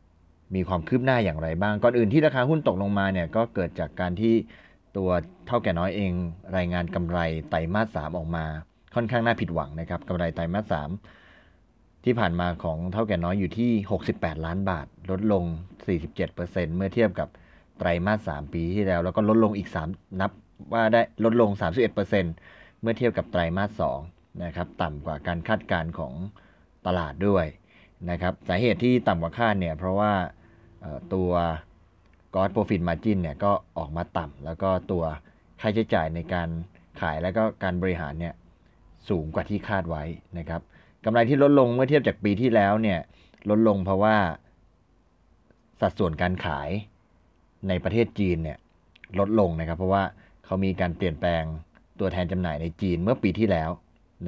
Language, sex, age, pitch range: Thai, male, 30-49, 85-105 Hz